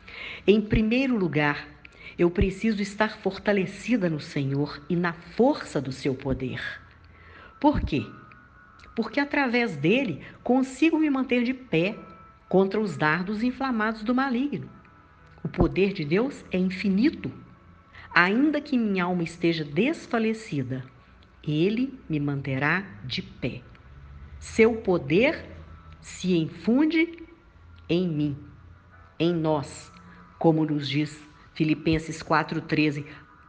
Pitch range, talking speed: 145-215 Hz, 110 wpm